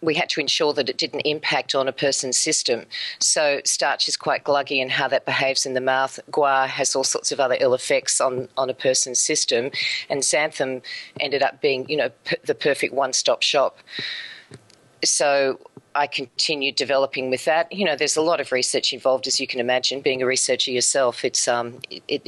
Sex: female